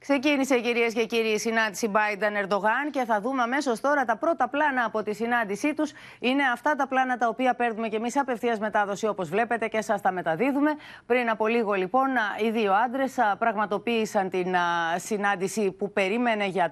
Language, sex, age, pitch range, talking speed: Greek, female, 30-49, 185-245 Hz, 175 wpm